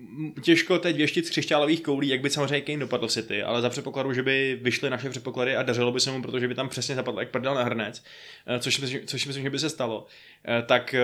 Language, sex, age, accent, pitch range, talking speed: Czech, male, 20-39, native, 120-145 Hz, 240 wpm